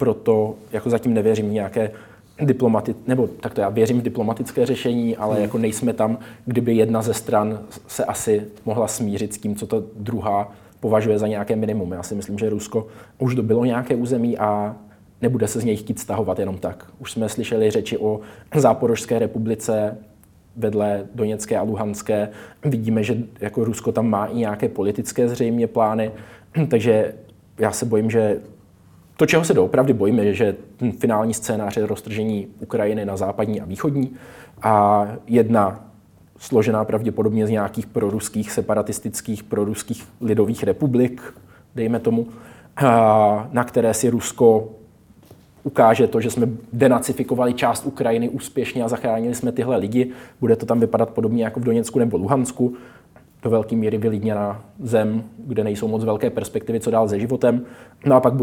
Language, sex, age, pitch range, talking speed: Czech, male, 20-39, 105-115 Hz, 155 wpm